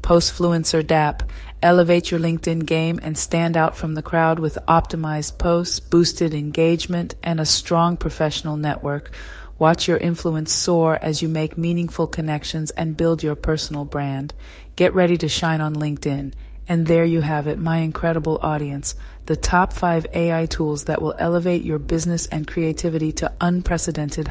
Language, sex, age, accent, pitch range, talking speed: English, female, 30-49, American, 155-170 Hz, 160 wpm